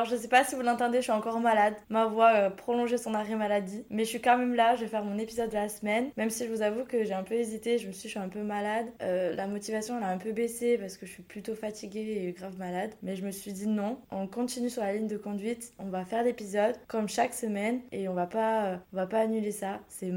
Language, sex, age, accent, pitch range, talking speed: French, female, 20-39, French, 190-230 Hz, 290 wpm